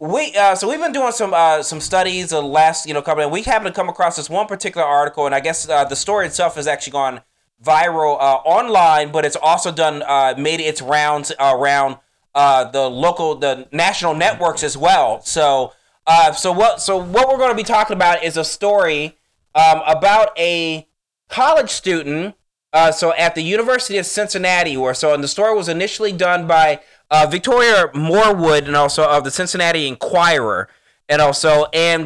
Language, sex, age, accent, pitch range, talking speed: English, male, 20-39, American, 150-200 Hz, 195 wpm